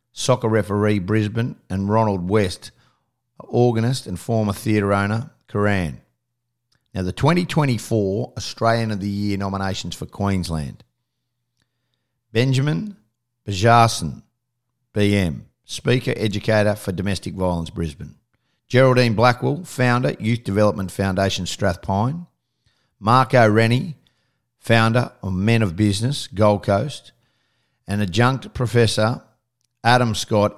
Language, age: English, 50-69